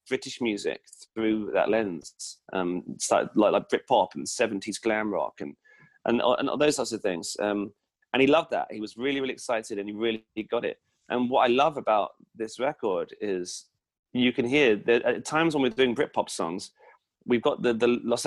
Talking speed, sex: 200 wpm, male